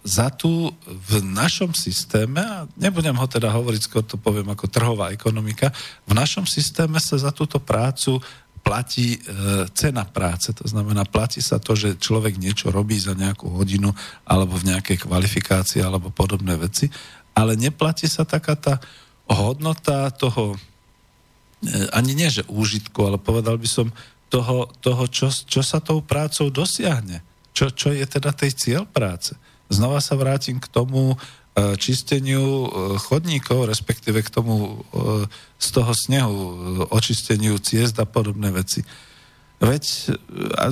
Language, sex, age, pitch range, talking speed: Slovak, male, 40-59, 105-145 Hz, 145 wpm